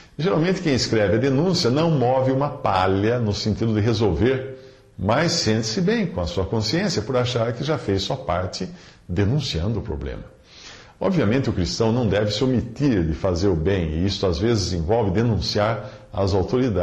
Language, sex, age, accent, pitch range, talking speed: Portuguese, male, 50-69, Brazilian, 100-130 Hz, 170 wpm